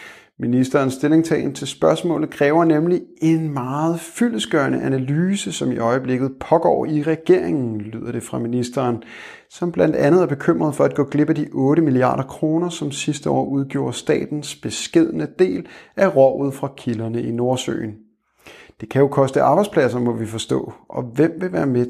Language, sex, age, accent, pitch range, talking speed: Danish, male, 30-49, native, 125-160 Hz, 165 wpm